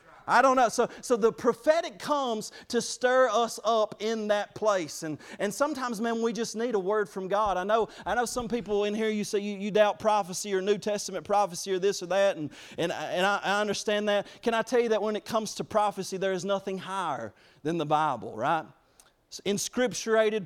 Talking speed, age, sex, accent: 220 wpm, 30-49, male, American